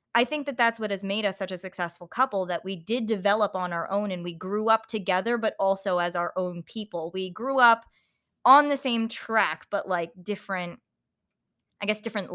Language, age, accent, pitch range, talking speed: English, 20-39, American, 190-250 Hz, 210 wpm